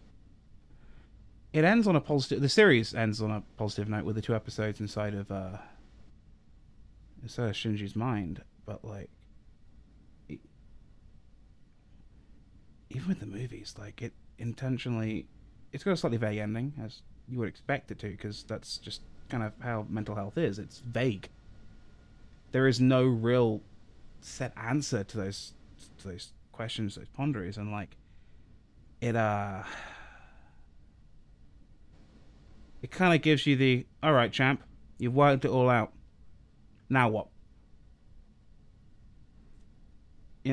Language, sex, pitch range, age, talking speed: English, male, 105-135 Hz, 20-39, 135 wpm